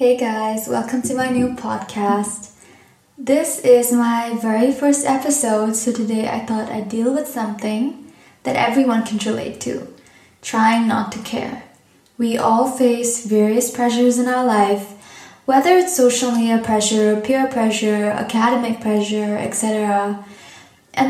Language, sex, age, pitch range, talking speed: English, female, 10-29, 220-255 Hz, 140 wpm